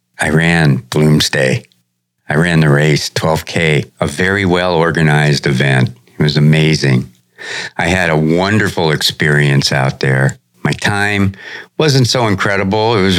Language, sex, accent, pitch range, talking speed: English, male, American, 70-95 Hz, 130 wpm